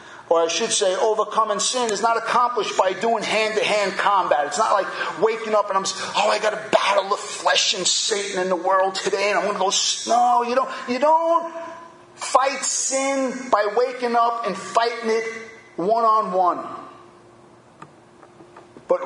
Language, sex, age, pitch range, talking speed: English, male, 40-59, 205-250 Hz, 170 wpm